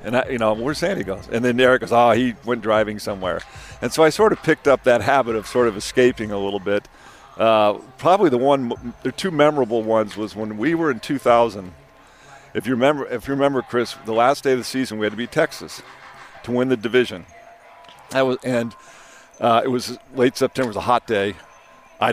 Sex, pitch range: male, 115-135 Hz